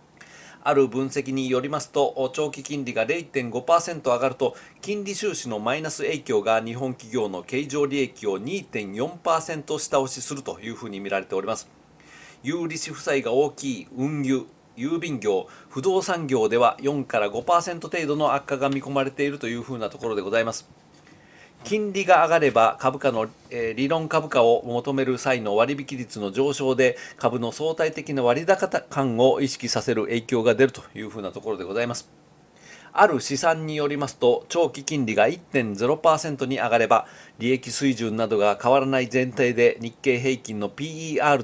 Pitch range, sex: 120-160 Hz, male